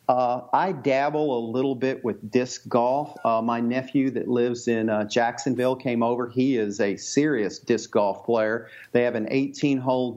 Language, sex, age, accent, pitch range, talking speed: English, male, 50-69, American, 120-140 Hz, 175 wpm